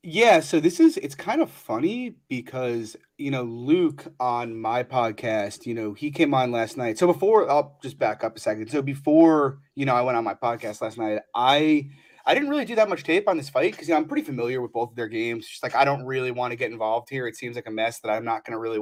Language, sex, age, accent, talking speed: English, male, 30-49, American, 260 wpm